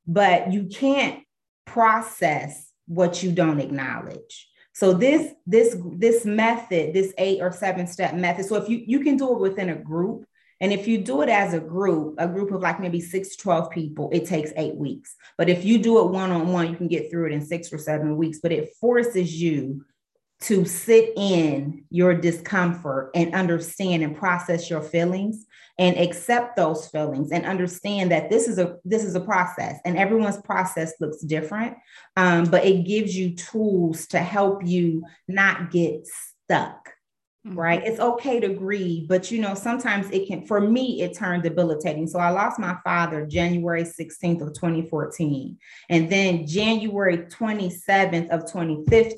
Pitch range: 160-195 Hz